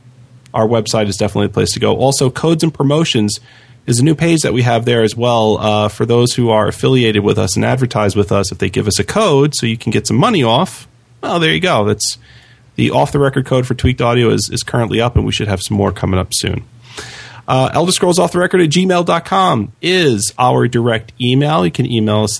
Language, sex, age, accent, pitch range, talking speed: English, male, 40-59, American, 110-135 Hz, 240 wpm